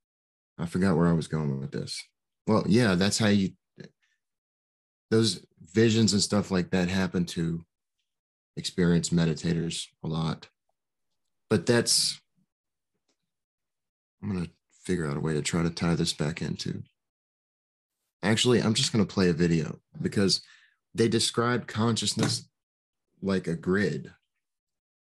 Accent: American